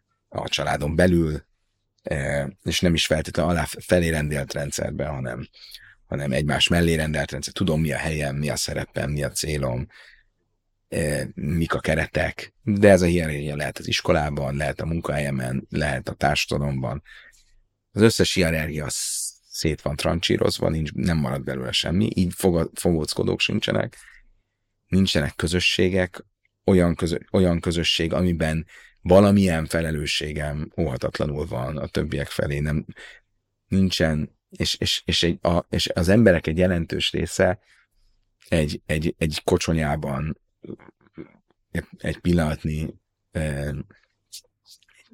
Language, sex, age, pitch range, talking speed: Hungarian, male, 30-49, 75-90 Hz, 120 wpm